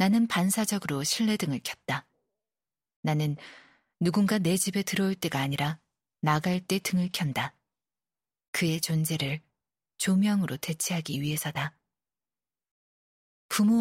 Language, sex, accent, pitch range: Korean, female, native, 150-195 Hz